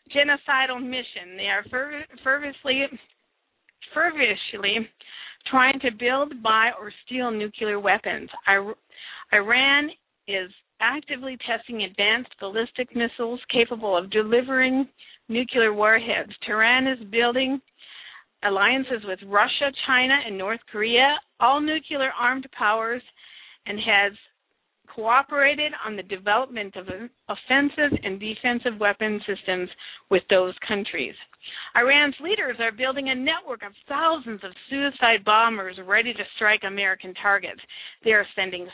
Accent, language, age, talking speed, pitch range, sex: American, English, 50-69, 115 wpm, 210-260 Hz, female